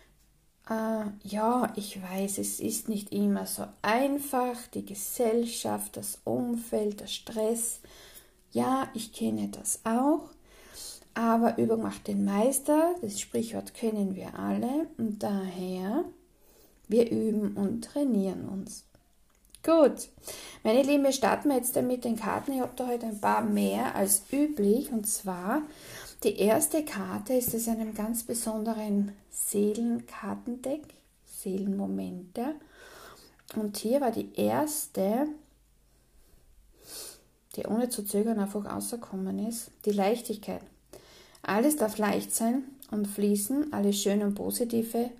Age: 50-69